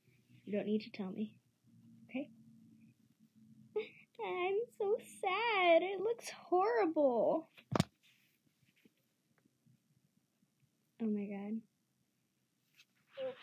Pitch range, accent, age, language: 215-310 Hz, American, 20-39, English